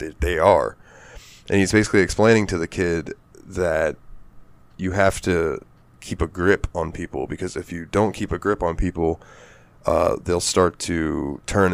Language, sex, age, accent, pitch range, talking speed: English, male, 20-39, American, 85-105 Hz, 165 wpm